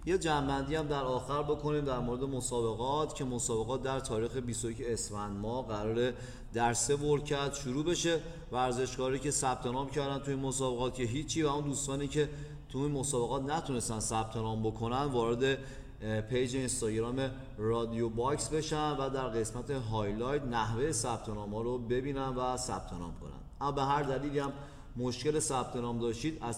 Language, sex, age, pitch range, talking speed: Persian, male, 30-49, 115-145 Hz, 160 wpm